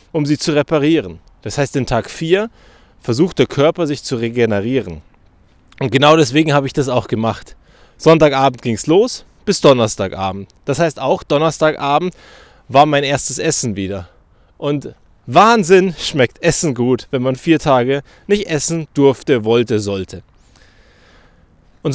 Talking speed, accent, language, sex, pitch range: 145 wpm, German, German, male, 120-170 Hz